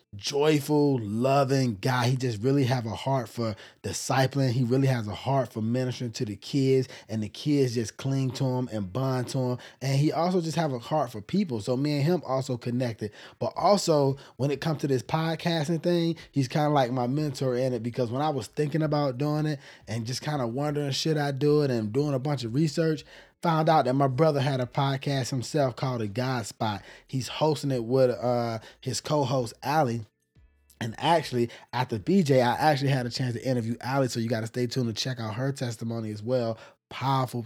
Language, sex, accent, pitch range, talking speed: English, male, American, 120-145 Hz, 215 wpm